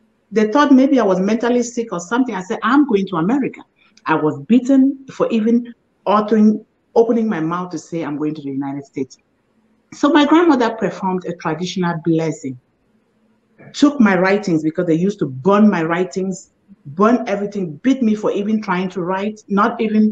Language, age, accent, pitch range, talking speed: English, 50-69, Nigerian, 160-230 Hz, 175 wpm